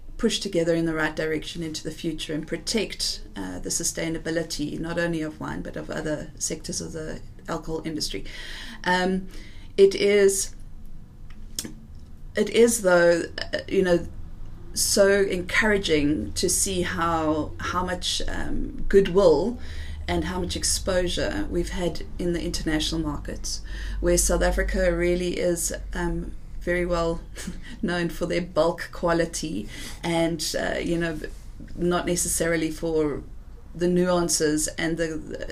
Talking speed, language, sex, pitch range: 130 wpm, English, female, 155-175 Hz